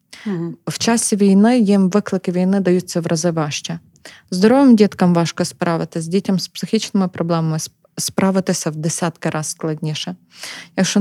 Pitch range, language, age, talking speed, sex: 170-205 Hz, Ukrainian, 20-39, 135 wpm, female